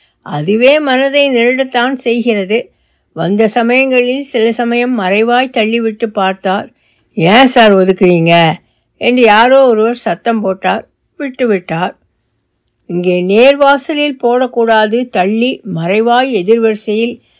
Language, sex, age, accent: Tamil, female, 60-79, native